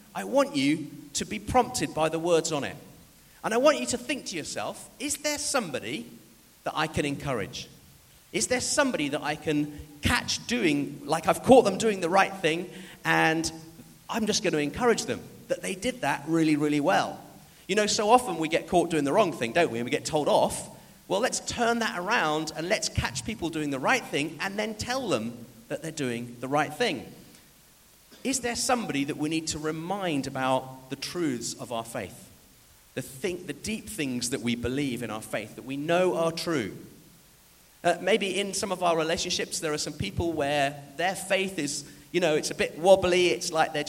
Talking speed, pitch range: 205 wpm, 145-200 Hz